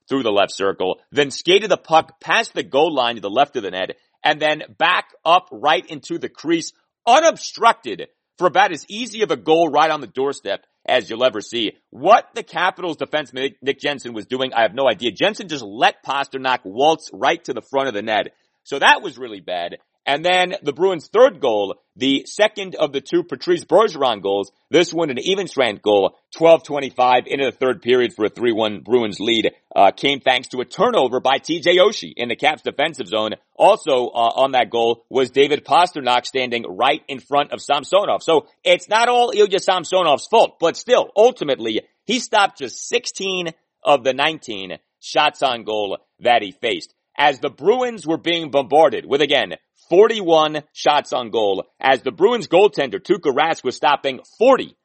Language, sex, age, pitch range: English, male, 40-59, 130-215 Hz